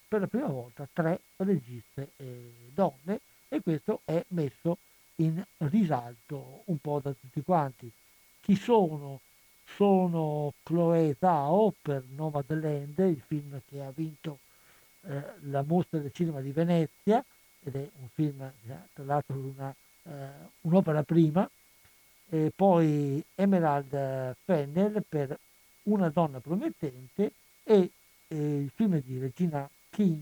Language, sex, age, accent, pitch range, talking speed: Italian, male, 60-79, native, 140-190 Hz, 125 wpm